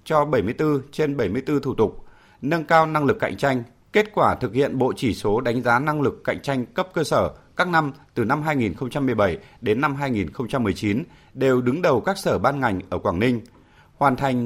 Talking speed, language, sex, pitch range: 200 wpm, Vietnamese, male, 115-145 Hz